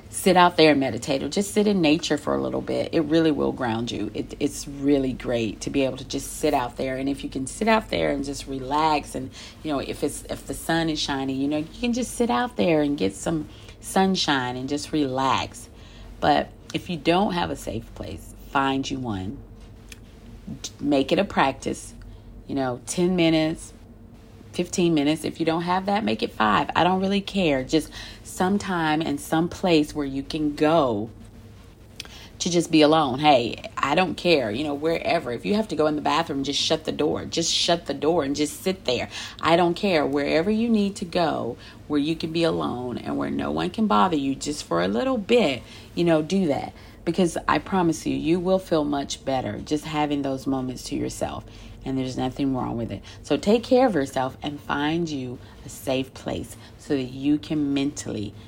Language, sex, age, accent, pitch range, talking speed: English, female, 40-59, American, 115-160 Hz, 210 wpm